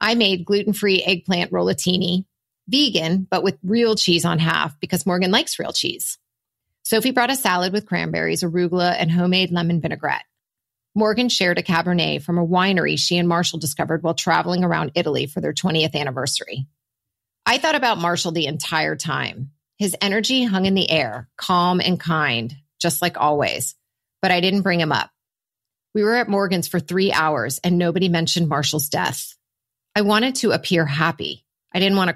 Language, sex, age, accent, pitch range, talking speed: English, female, 30-49, American, 150-190 Hz, 175 wpm